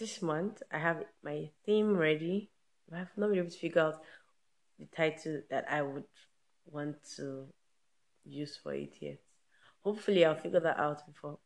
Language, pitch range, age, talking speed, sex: English, 150-190 Hz, 20-39, 170 wpm, female